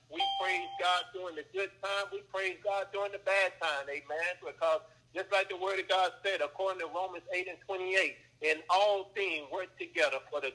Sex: male